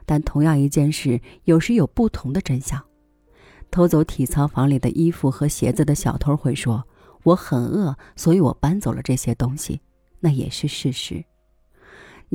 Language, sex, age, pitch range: Chinese, female, 30-49, 125-165 Hz